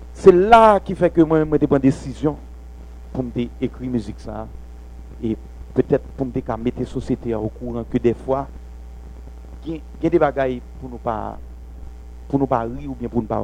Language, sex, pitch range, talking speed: English, male, 105-140 Hz, 190 wpm